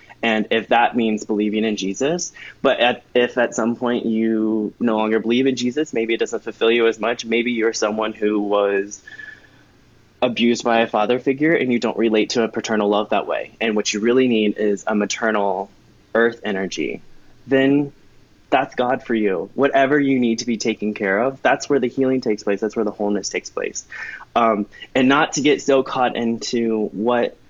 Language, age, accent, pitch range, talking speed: English, 20-39, American, 105-125 Hz, 195 wpm